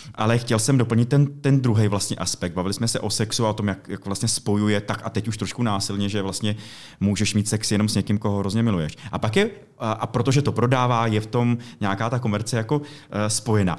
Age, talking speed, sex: 30-49, 230 wpm, male